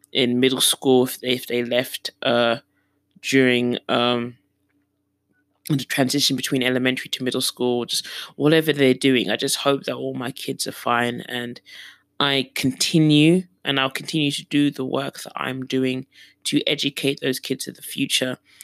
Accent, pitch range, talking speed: British, 125-140 Hz, 160 wpm